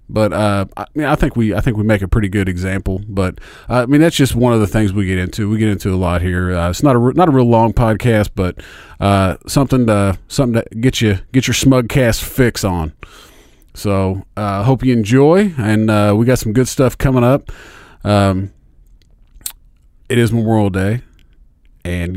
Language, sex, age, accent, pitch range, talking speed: English, male, 30-49, American, 95-120 Hz, 215 wpm